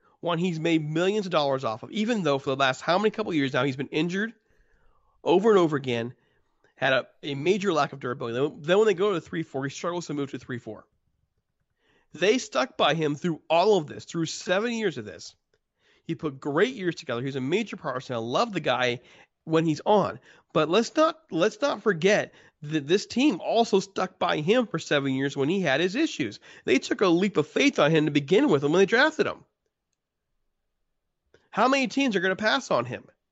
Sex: male